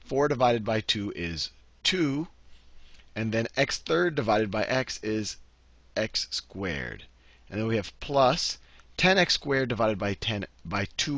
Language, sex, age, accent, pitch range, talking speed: English, male, 40-59, American, 85-125 Hz, 140 wpm